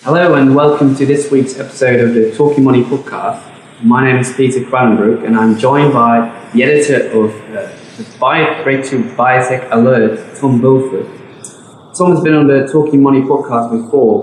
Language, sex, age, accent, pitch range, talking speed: English, male, 20-39, British, 115-140 Hz, 170 wpm